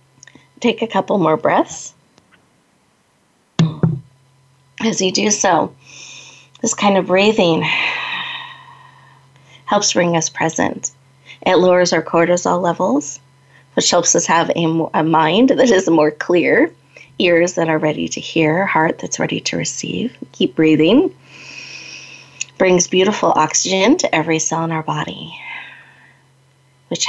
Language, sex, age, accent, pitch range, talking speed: English, female, 30-49, American, 140-185 Hz, 125 wpm